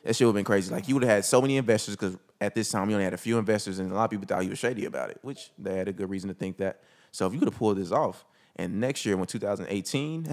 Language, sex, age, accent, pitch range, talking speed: English, male, 20-39, American, 95-110 Hz, 330 wpm